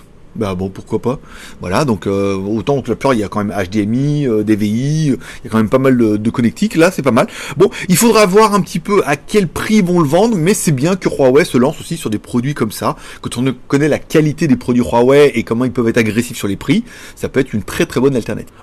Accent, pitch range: French, 115-165 Hz